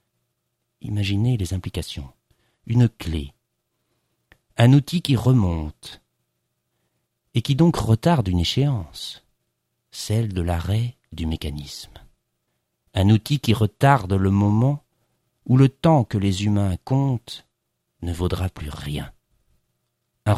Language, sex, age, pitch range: French, male, 50-69, 85-115 Hz